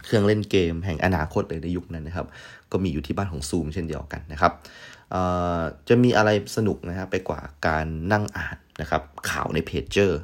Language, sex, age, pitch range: Thai, male, 30-49, 80-100 Hz